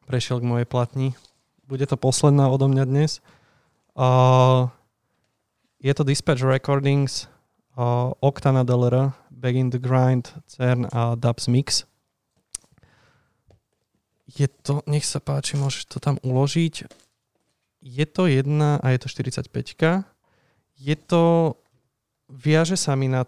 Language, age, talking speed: Slovak, 20-39, 125 wpm